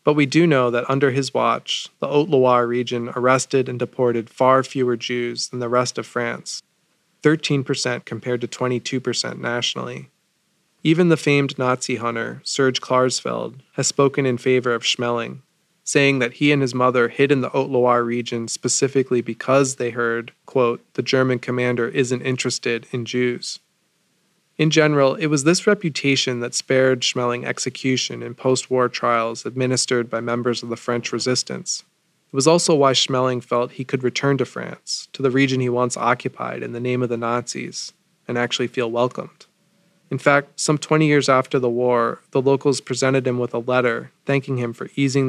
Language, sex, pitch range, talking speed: English, male, 120-140 Hz, 170 wpm